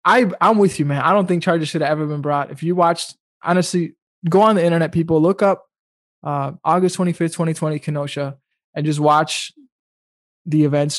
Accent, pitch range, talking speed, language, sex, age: American, 145-180 Hz, 190 wpm, English, male, 20-39